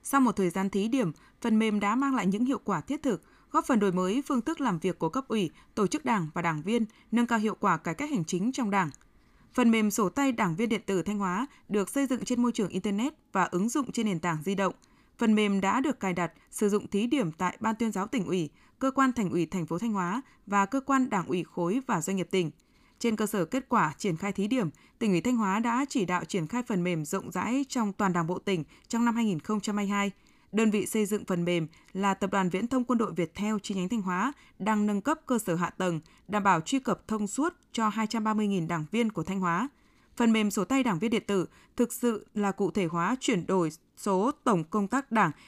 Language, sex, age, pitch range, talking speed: Vietnamese, female, 20-39, 190-245 Hz, 255 wpm